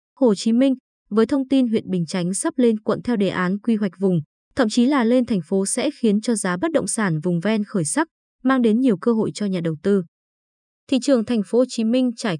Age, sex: 20-39, female